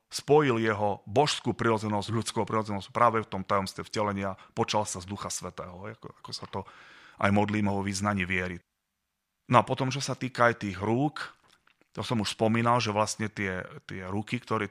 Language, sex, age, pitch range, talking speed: Slovak, male, 30-49, 100-120 Hz, 165 wpm